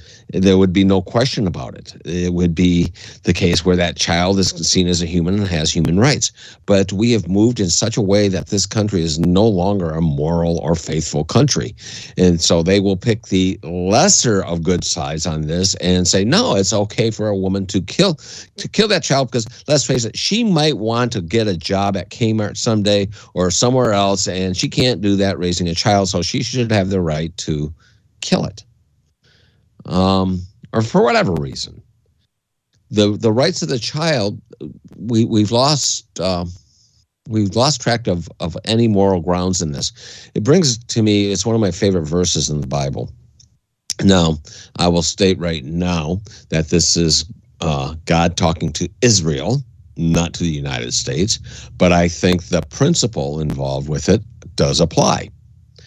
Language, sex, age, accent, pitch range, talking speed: English, male, 50-69, American, 85-115 Hz, 185 wpm